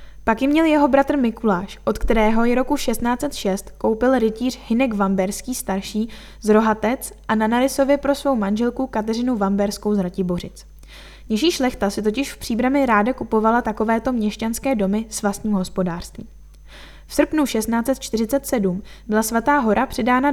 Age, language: 10-29, Czech